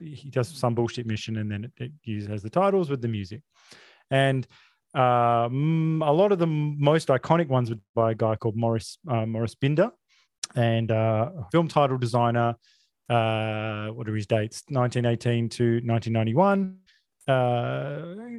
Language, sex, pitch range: English, male, 115-145 Hz